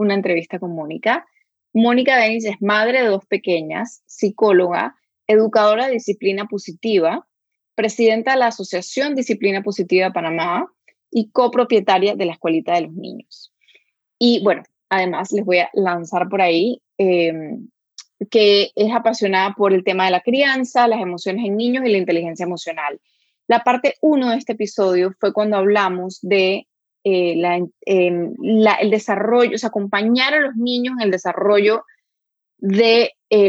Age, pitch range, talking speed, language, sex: 20-39, 185-230 Hz, 150 wpm, Spanish, female